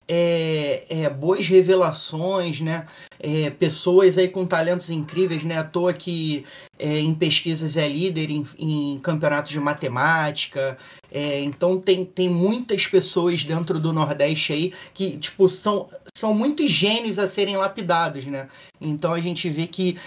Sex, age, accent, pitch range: male, 20-39, Brazilian, 150-185 Hz